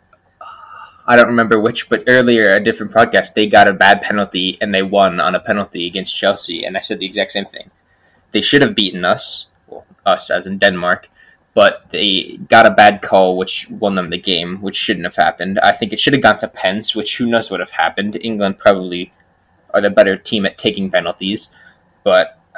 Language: English